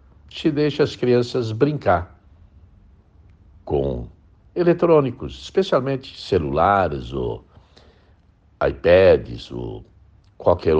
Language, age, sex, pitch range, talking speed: Portuguese, 60-79, male, 80-100 Hz, 70 wpm